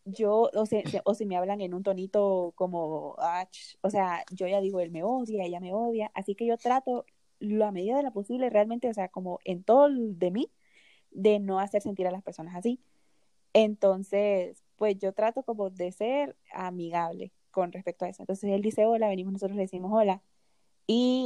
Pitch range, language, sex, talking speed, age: 185-230 Hz, Spanish, female, 200 wpm, 20-39